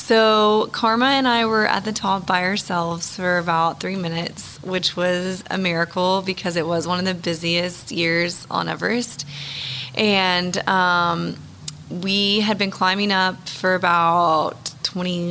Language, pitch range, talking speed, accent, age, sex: English, 170-205 Hz, 145 wpm, American, 20-39, female